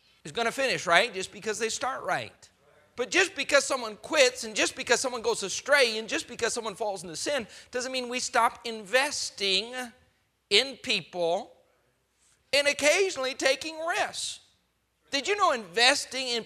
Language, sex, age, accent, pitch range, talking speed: English, male, 40-59, American, 195-270 Hz, 155 wpm